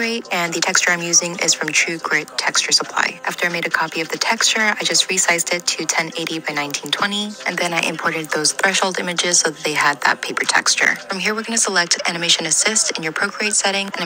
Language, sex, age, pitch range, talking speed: English, female, 20-39, 165-205 Hz, 230 wpm